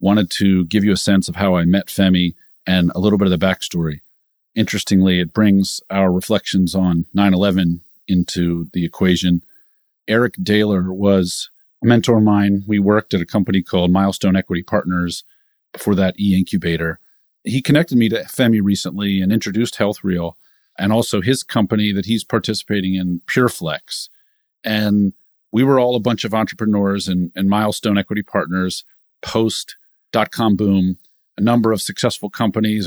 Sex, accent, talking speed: male, American, 160 wpm